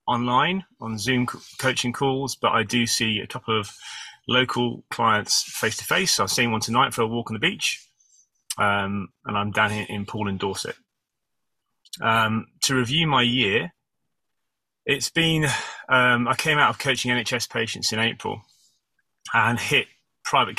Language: English